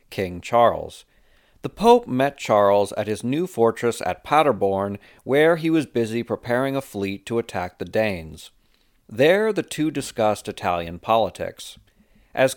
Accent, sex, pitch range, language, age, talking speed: American, male, 100-140 Hz, English, 40-59, 145 wpm